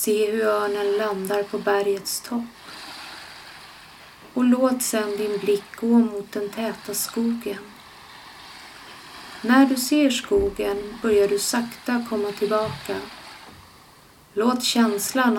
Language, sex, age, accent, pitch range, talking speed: Swedish, female, 30-49, native, 195-230 Hz, 110 wpm